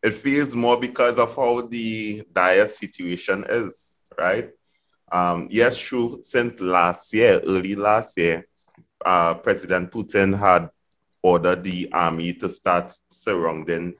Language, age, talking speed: English, 30-49, 130 wpm